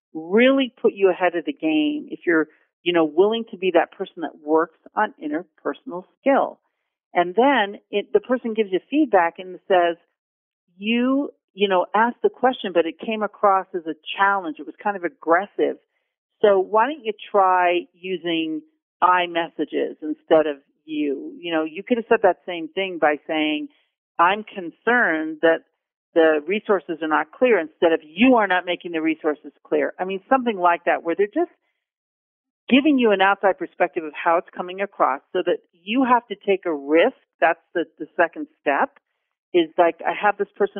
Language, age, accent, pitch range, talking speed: English, 50-69, American, 170-230 Hz, 185 wpm